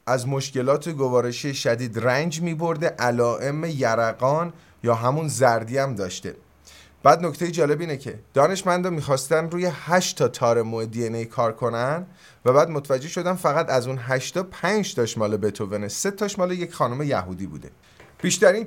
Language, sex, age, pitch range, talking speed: Persian, male, 30-49, 105-155 Hz, 155 wpm